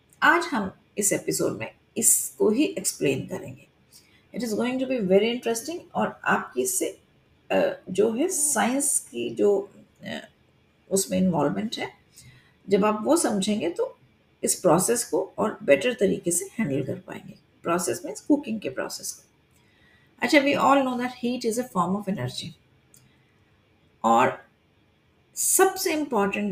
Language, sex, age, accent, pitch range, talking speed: Hindi, female, 50-69, native, 190-280 Hz, 140 wpm